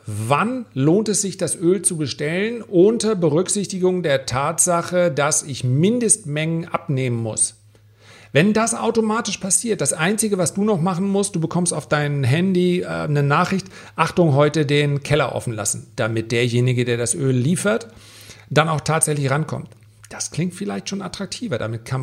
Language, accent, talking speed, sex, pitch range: German, German, 160 wpm, male, 120-175 Hz